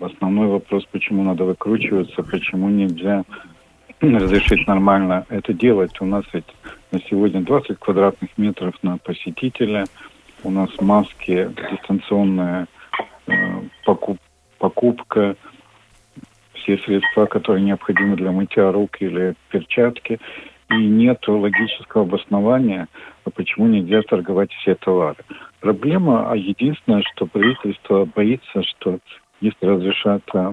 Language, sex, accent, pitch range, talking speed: Russian, male, native, 95-110 Hz, 105 wpm